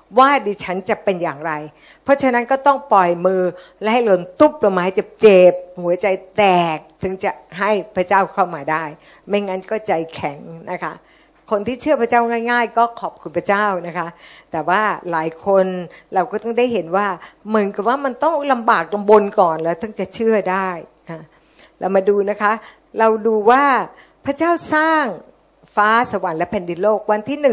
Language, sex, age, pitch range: Thai, female, 60-79, 180-230 Hz